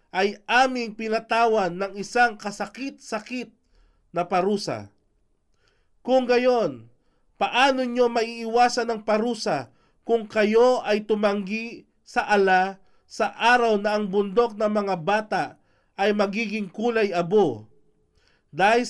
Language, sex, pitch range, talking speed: Filipino, male, 190-240 Hz, 105 wpm